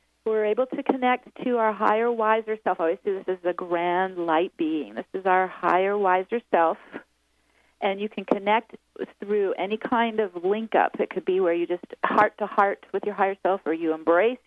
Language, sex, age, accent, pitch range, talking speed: English, female, 40-59, American, 190-240 Hz, 205 wpm